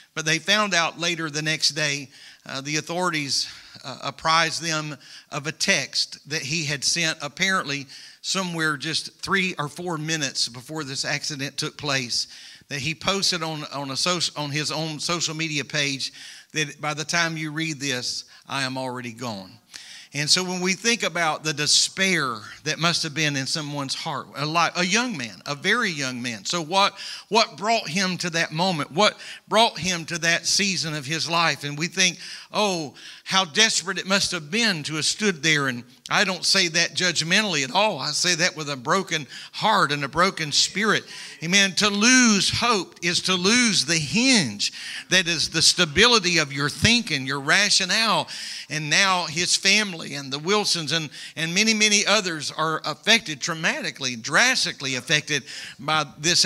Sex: male